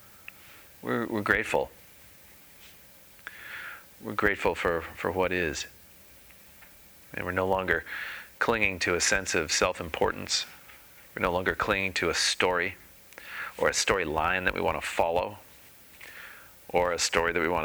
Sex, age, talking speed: male, 30-49, 135 wpm